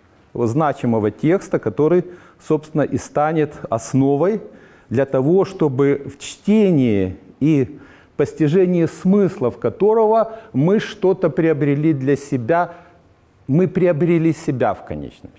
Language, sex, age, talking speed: Ukrainian, male, 50-69, 105 wpm